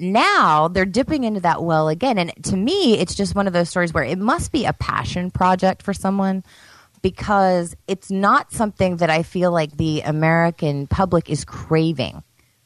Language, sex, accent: English, female, American